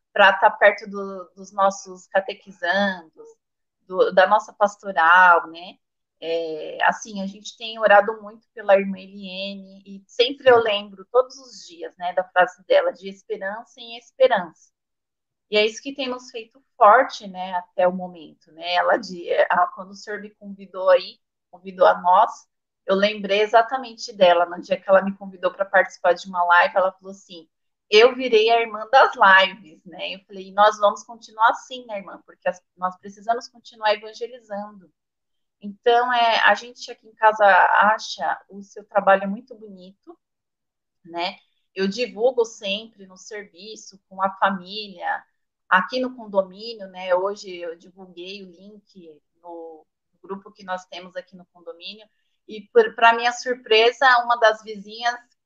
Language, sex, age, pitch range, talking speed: Portuguese, female, 30-49, 190-230 Hz, 155 wpm